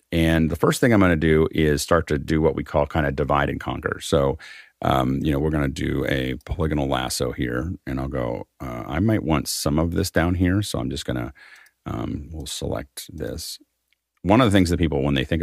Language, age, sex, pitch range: English, 40-59, male, 70-85 Hz